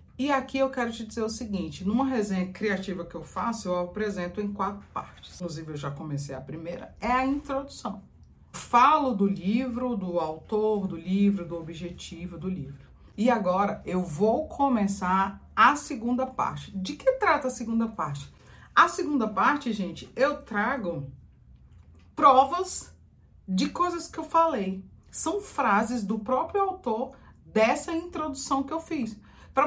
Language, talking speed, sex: Portuguese, 155 wpm, female